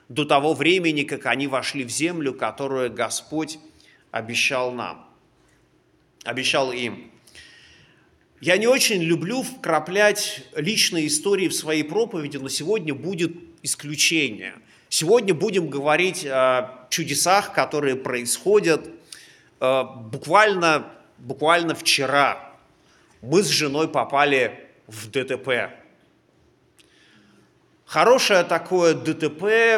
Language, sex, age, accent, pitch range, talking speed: Russian, male, 30-49, native, 135-185 Hz, 95 wpm